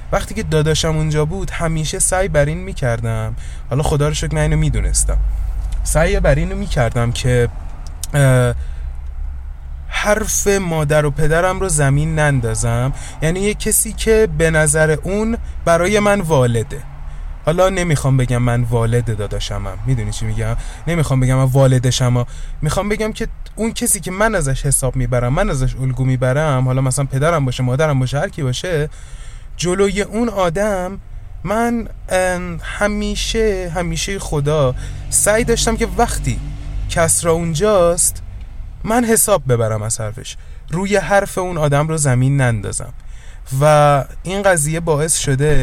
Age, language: 20-39, Persian